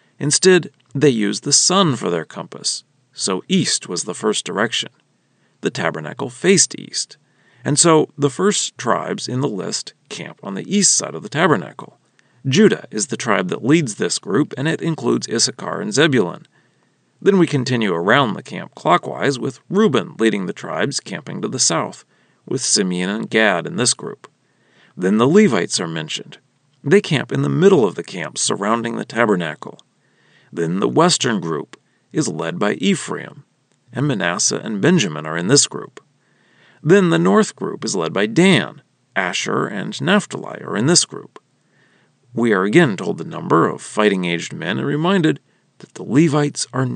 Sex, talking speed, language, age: male, 170 wpm, English, 40-59